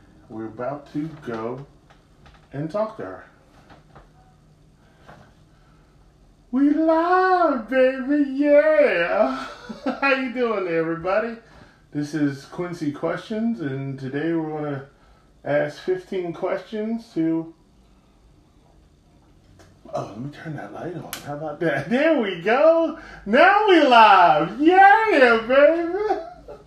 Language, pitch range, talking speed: English, 145-225 Hz, 105 wpm